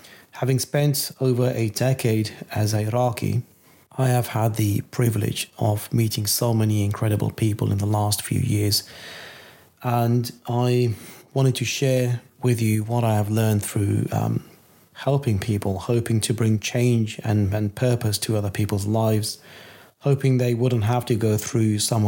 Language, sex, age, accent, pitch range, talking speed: English, male, 30-49, British, 105-125 Hz, 160 wpm